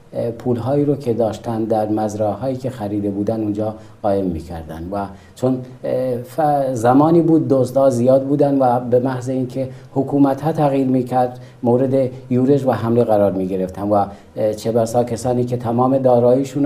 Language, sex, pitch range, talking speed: Persian, male, 110-135 Hz, 140 wpm